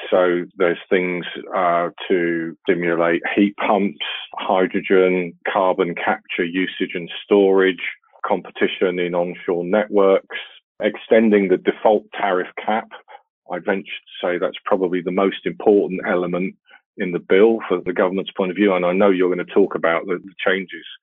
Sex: male